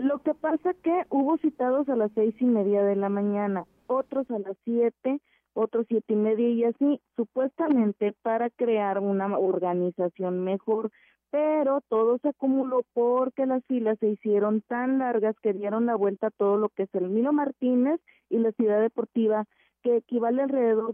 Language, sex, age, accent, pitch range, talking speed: Spanish, female, 30-49, Mexican, 210-255 Hz, 170 wpm